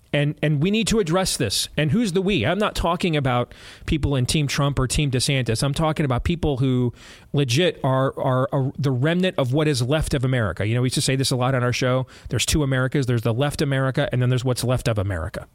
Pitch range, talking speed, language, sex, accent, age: 120-155 Hz, 250 wpm, English, male, American, 30-49